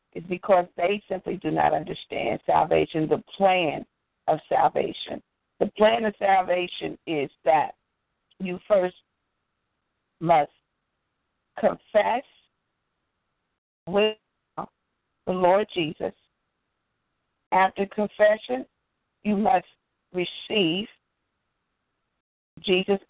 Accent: American